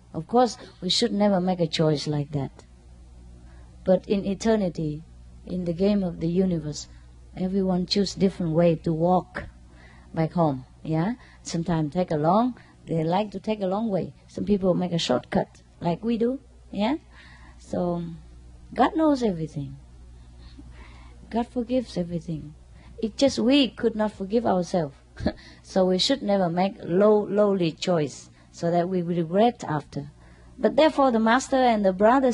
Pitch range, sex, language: 155-235 Hz, female, English